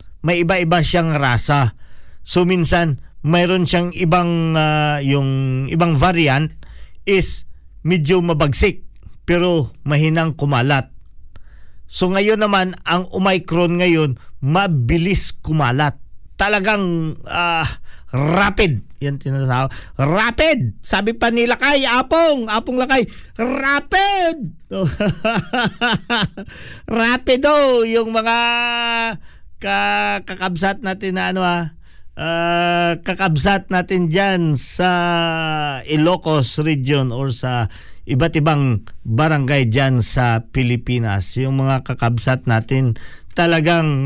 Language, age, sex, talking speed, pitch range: Filipino, 50-69, male, 95 wpm, 135-200 Hz